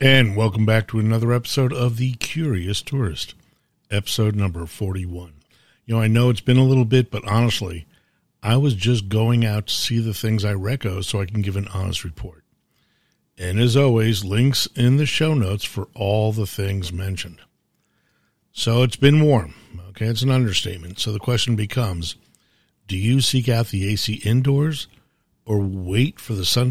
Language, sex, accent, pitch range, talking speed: English, male, American, 100-125 Hz, 175 wpm